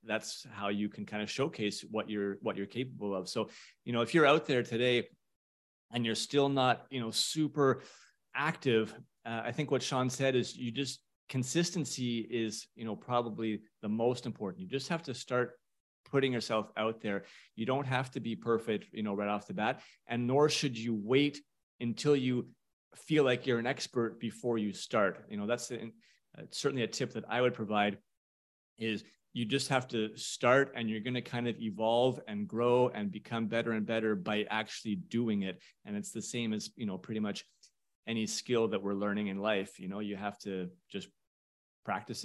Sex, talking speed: male, 200 wpm